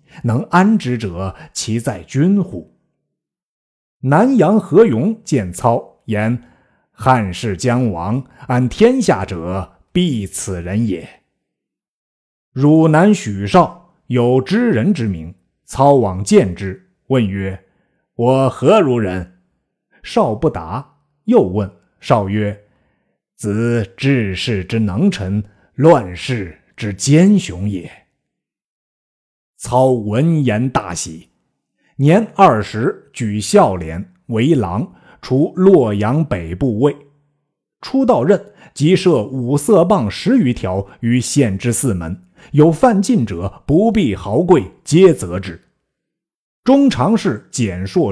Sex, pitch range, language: male, 100-165 Hz, Chinese